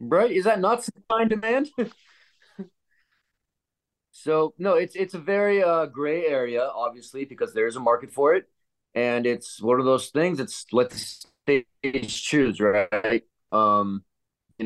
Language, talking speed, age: English, 145 wpm, 30-49